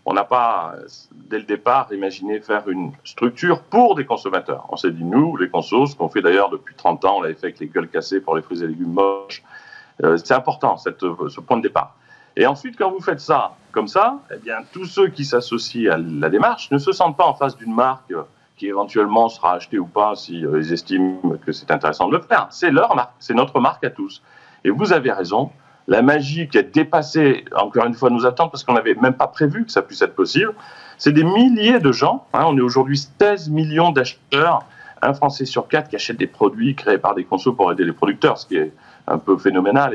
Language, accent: French, French